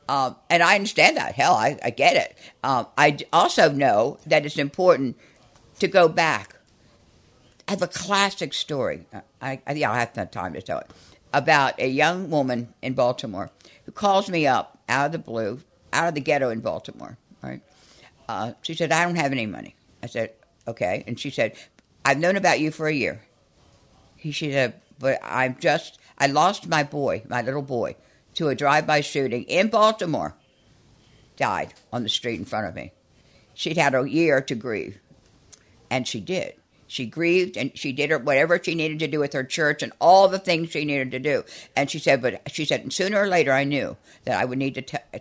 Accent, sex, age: American, female, 60-79